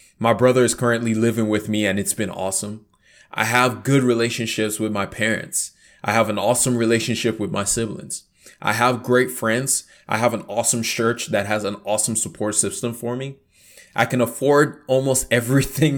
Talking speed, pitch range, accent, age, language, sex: 180 wpm, 100-125 Hz, American, 20-39, English, male